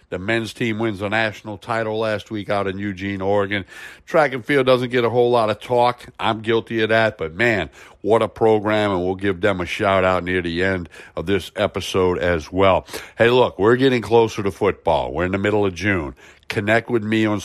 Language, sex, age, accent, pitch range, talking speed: English, male, 60-79, American, 95-115 Hz, 215 wpm